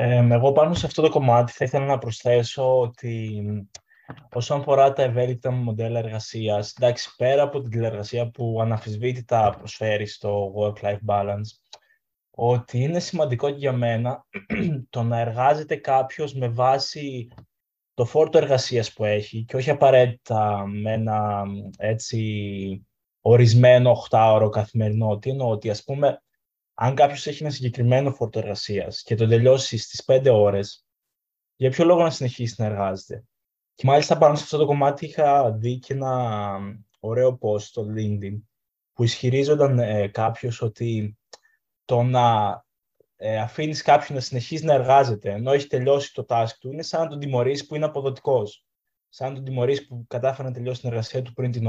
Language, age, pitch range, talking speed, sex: Greek, 20-39, 110-135 Hz, 150 wpm, male